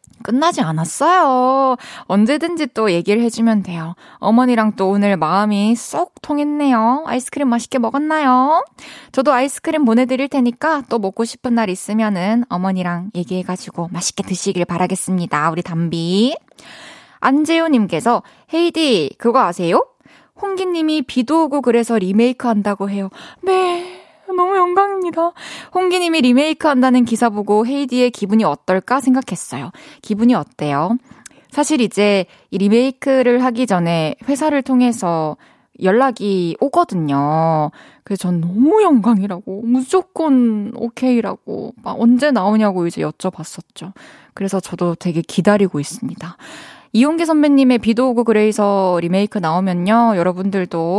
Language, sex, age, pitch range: Korean, female, 20-39, 190-270 Hz